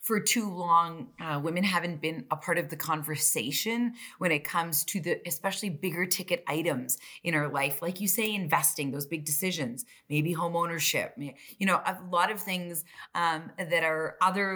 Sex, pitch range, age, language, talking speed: female, 155-195 Hz, 30-49, English, 180 wpm